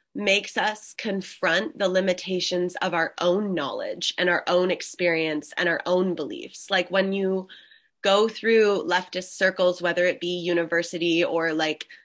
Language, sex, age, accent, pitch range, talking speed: English, female, 20-39, American, 170-195 Hz, 150 wpm